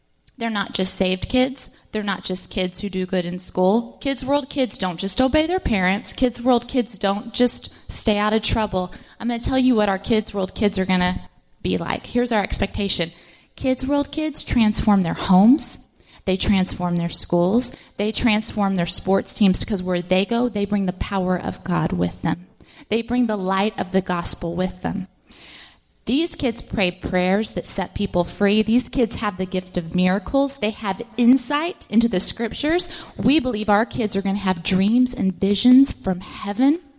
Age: 20-39